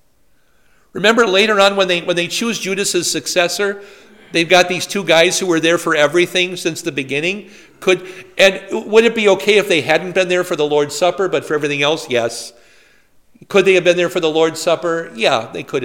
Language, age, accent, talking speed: English, 50-69, American, 210 wpm